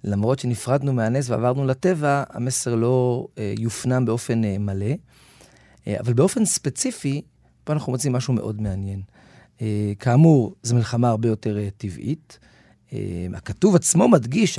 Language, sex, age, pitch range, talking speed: Hebrew, male, 40-59, 110-140 Hz, 140 wpm